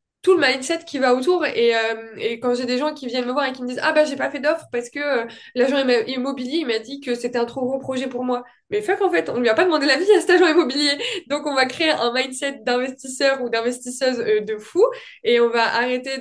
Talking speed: 275 wpm